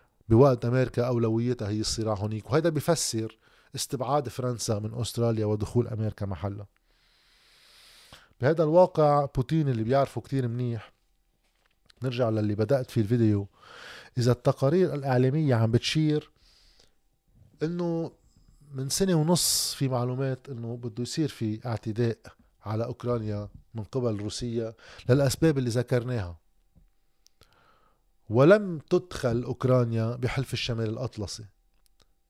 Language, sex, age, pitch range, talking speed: Arabic, male, 20-39, 115-150 Hz, 105 wpm